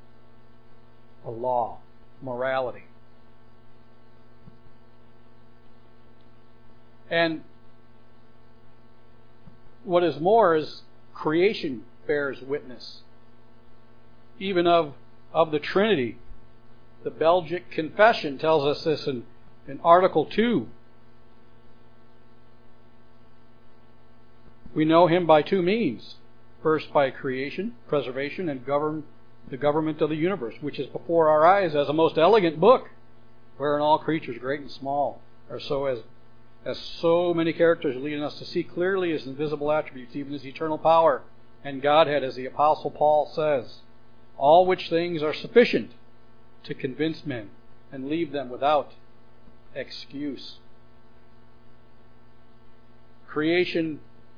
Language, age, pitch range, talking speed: English, 60-79, 140-165 Hz, 110 wpm